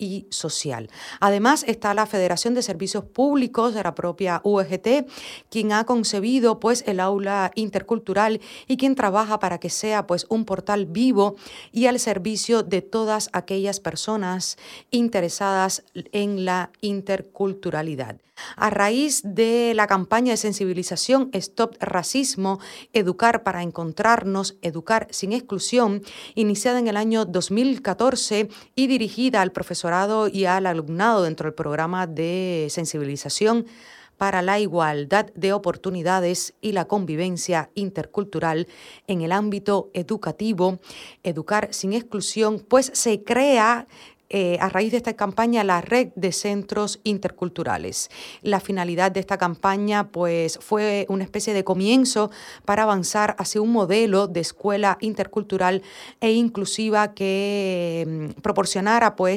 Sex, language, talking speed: female, Spanish, 125 wpm